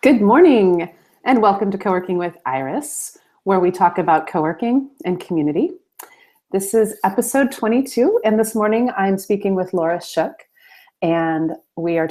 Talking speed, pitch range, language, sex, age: 150 wpm, 155-195 Hz, English, female, 30-49